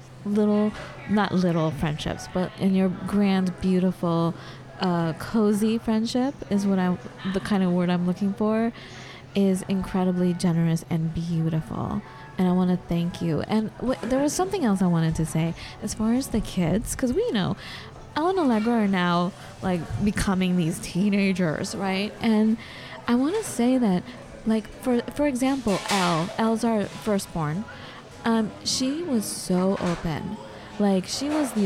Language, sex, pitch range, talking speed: English, female, 180-230 Hz, 165 wpm